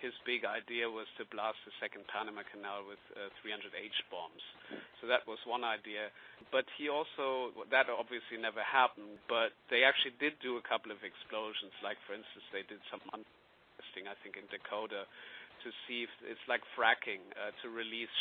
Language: English